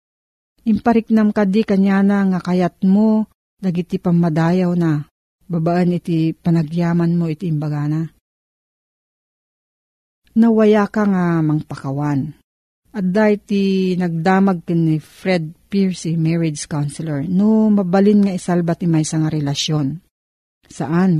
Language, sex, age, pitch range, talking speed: Filipino, female, 50-69, 155-195 Hz, 110 wpm